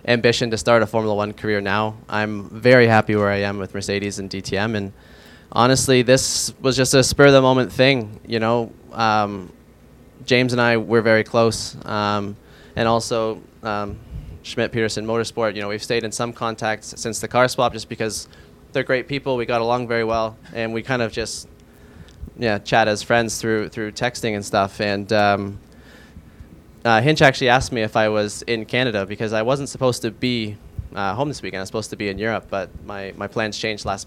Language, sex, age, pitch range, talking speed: English, male, 20-39, 100-115 Hz, 195 wpm